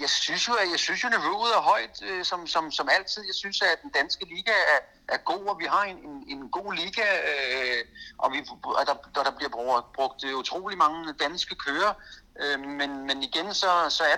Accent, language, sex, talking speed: native, Danish, male, 150 wpm